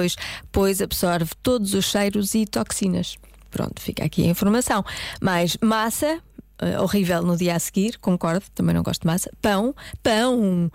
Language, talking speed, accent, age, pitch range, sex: Portuguese, 150 wpm, Brazilian, 20-39, 175-220 Hz, female